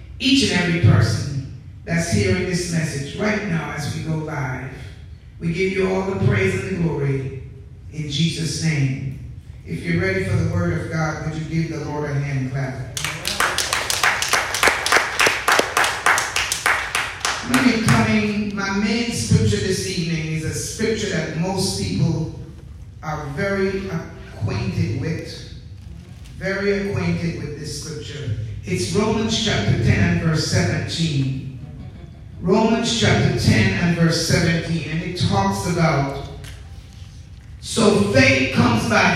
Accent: American